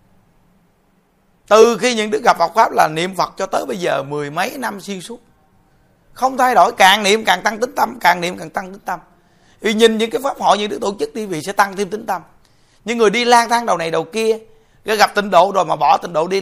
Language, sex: Vietnamese, male